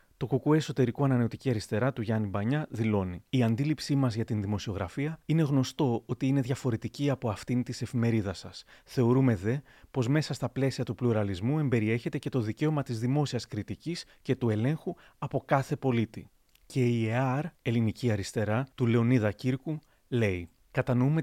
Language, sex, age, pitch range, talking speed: Greek, male, 30-49, 110-135 Hz, 160 wpm